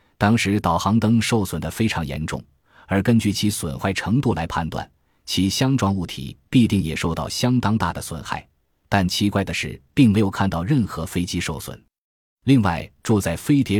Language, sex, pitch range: Chinese, male, 85-115 Hz